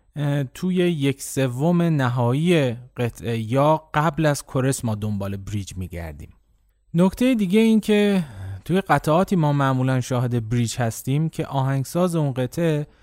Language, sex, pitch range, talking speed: Persian, male, 115-145 Hz, 130 wpm